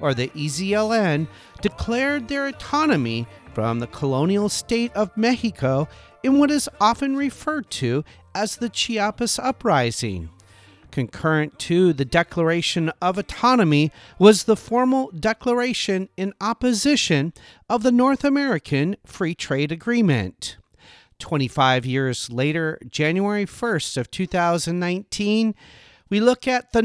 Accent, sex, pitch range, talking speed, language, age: American, male, 150-240 Hz, 115 wpm, English, 40-59